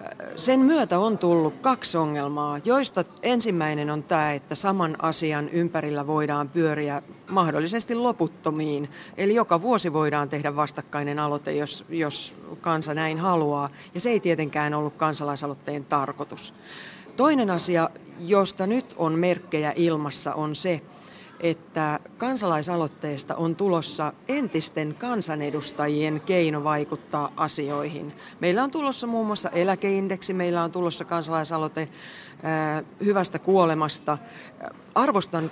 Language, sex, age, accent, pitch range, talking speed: Finnish, female, 40-59, native, 150-185 Hz, 115 wpm